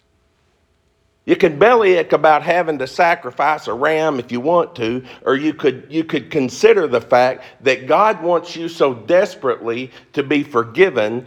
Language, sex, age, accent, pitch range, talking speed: English, male, 50-69, American, 100-155 Hz, 165 wpm